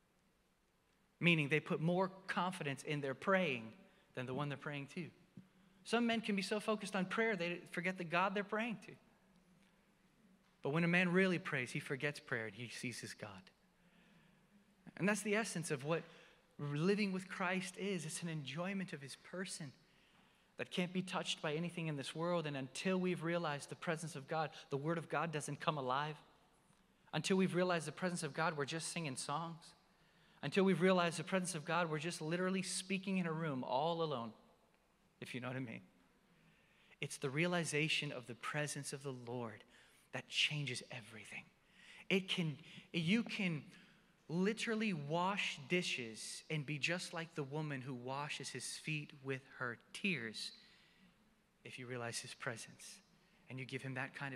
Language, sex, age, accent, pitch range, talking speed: English, male, 30-49, American, 145-190 Hz, 175 wpm